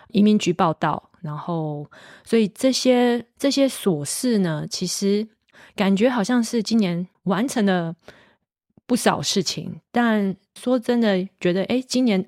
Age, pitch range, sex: 20-39, 165-210 Hz, female